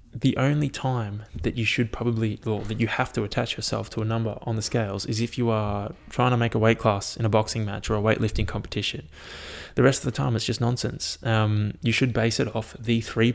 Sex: male